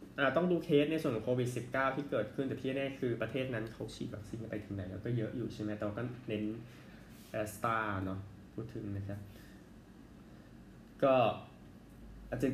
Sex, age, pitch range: male, 20-39, 105-130 Hz